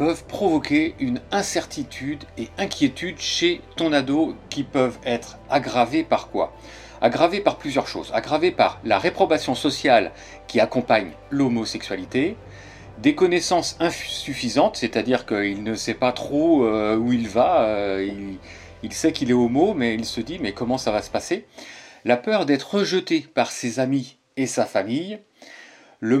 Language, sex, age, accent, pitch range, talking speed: French, male, 40-59, French, 115-180 Hz, 155 wpm